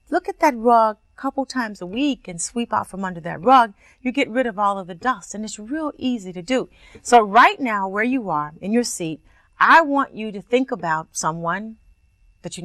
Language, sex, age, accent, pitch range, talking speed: English, female, 40-59, American, 170-255 Hz, 230 wpm